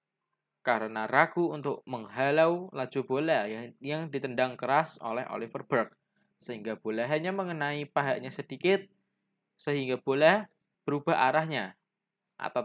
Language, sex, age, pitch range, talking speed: Indonesian, male, 20-39, 130-175 Hz, 115 wpm